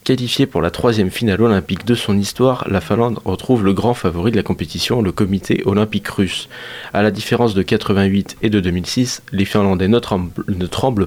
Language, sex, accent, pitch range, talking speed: French, male, French, 100-120 Hz, 190 wpm